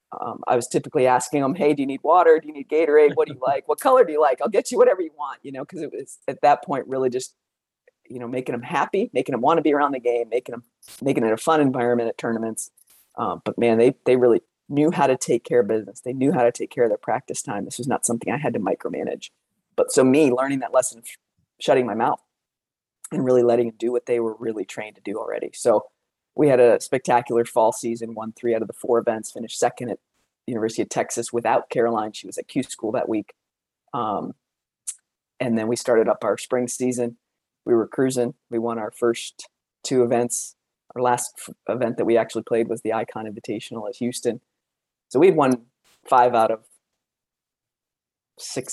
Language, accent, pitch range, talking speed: English, American, 115-140 Hz, 230 wpm